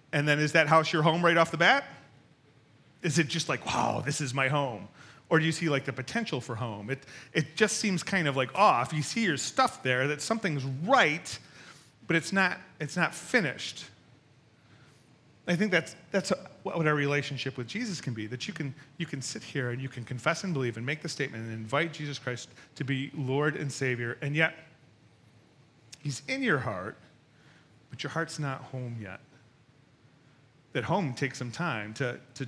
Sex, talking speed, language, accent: male, 200 wpm, English, American